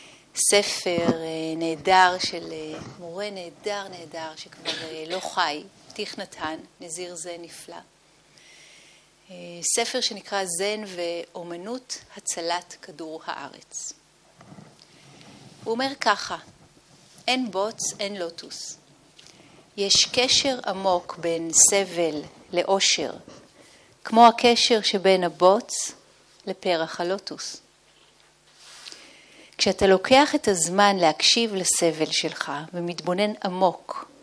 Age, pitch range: 40-59, 170-210 Hz